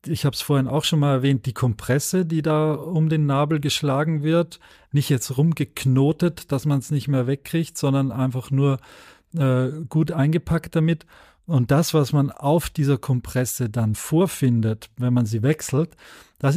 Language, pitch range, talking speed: German, 130-150 Hz, 170 wpm